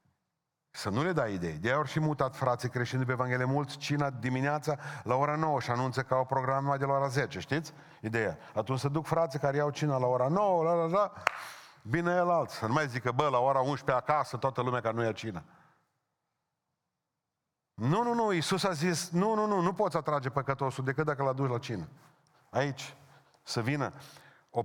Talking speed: 205 wpm